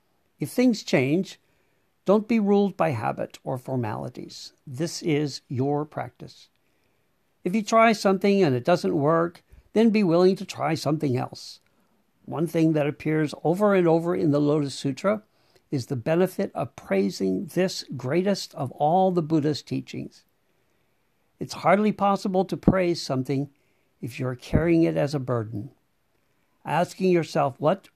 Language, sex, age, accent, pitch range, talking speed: English, male, 60-79, American, 140-185 Hz, 145 wpm